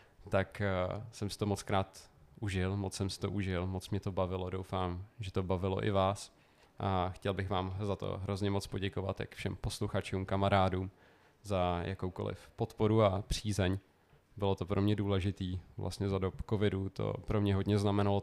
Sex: male